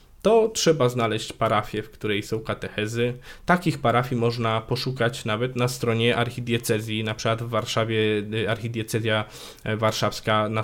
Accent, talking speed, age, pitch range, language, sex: native, 130 wpm, 20-39, 105-120 Hz, Polish, male